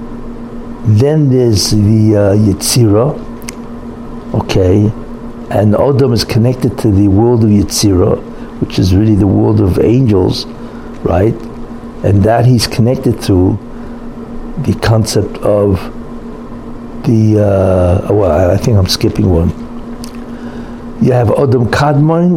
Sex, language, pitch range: male, English, 105-120 Hz